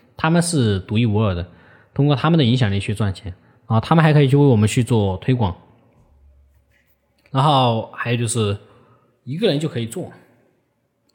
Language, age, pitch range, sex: Chinese, 20-39, 110-135 Hz, male